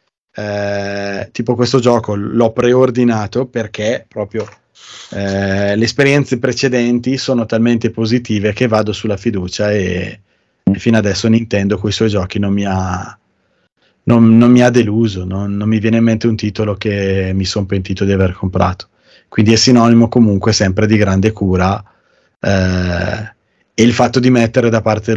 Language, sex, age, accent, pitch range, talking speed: Italian, male, 20-39, native, 100-120 Hz, 160 wpm